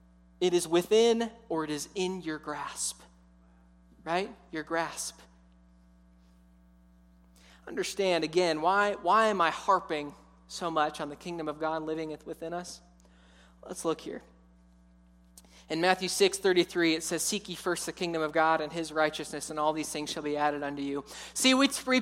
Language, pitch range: English, 155-210 Hz